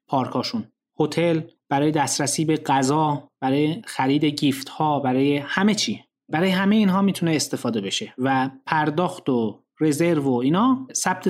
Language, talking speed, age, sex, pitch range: English, 140 wpm, 30-49, male, 140-200 Hz